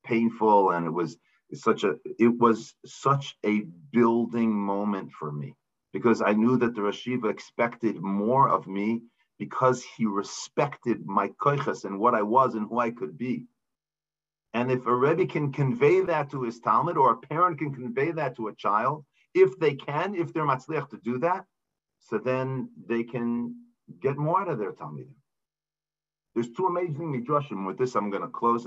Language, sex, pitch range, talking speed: English, male, 115-155 Hz, 180 wpm